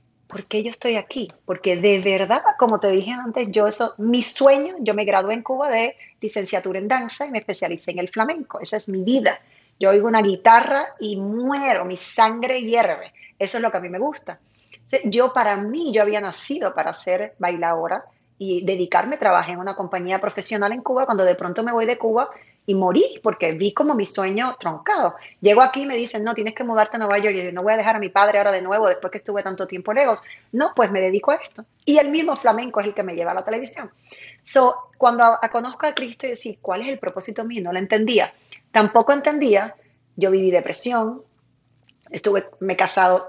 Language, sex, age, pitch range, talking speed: Spanish, female, 30-49, 190-245 Hz, 220 wpm